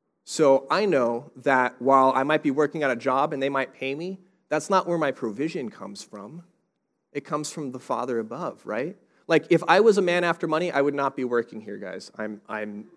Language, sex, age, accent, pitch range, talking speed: English, male, 30-49, American, 115-155 Hz, 220 wpm